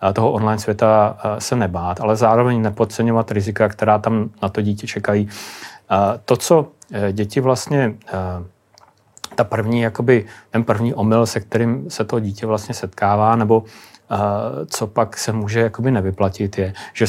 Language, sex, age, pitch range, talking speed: Czech, male, 30-49, 105-115 Hz, 145 wpm